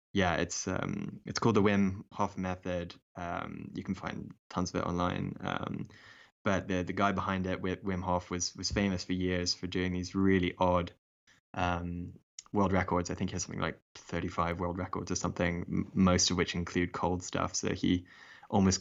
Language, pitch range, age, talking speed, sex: English, 90-95 Hz, 10-29, 190 wpm, male